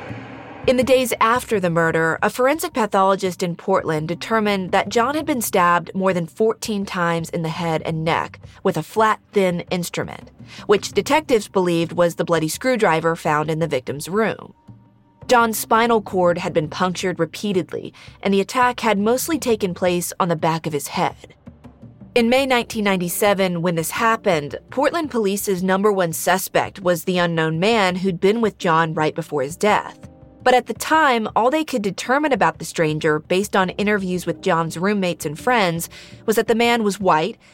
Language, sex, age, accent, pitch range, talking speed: English, female, 30-49, American, 170-225 Hz, 175 wpm